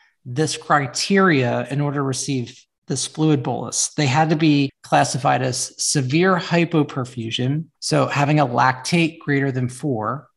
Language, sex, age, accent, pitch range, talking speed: English, male, 30-49, American, 130-155 Hz, 140 wpm